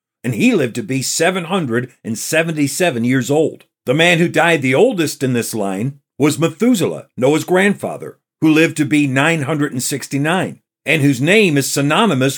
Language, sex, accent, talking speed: English, male, American, 150 wpm